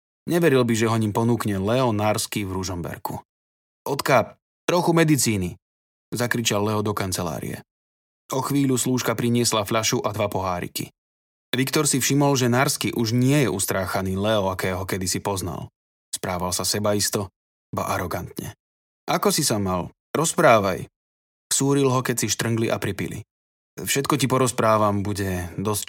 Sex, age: male, 20-39